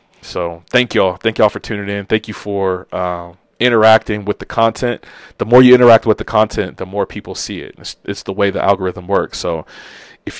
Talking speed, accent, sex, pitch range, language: 215 wpm, American, male, 95-115 Hz, English